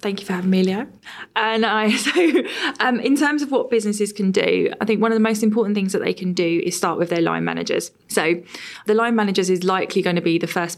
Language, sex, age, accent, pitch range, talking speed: English, female, 20-39, British, 165-205 Hz, 255 wpm